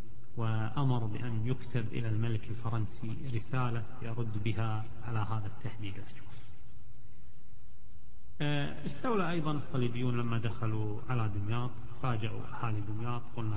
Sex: male